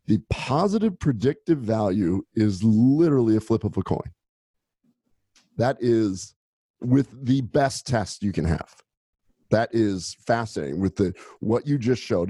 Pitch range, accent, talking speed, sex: 95-115 Hz, American, 140 wpm, male